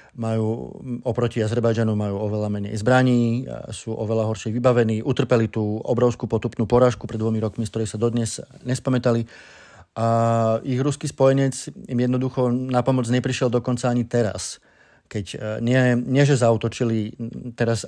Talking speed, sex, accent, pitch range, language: 140 wpm, male, native, 110-130 Hz, Czech